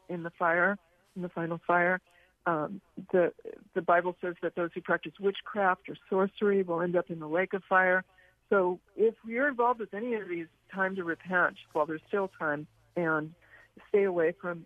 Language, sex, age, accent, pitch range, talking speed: English, female, 60-79, American, 175-220 Hz, 190 wpm